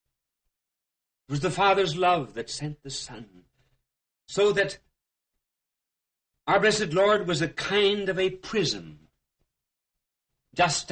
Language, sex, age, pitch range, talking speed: English, male, 60-79, 115-160 Hz, 110 wpm